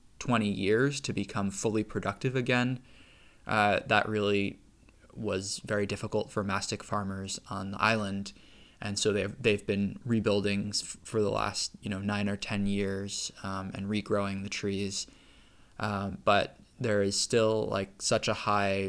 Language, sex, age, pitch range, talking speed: English, male, 20-39, 100-110 Hz, 155 wpm